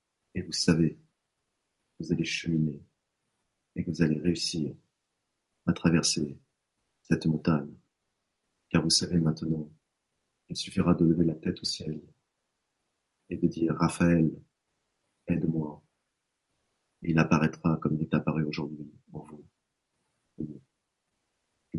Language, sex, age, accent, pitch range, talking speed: French, male, 40-59, French, 80-85 Hz, 120 wpm